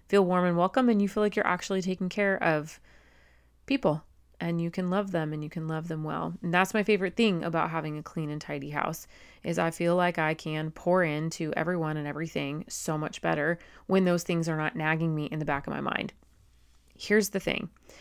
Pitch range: 150-185 Hz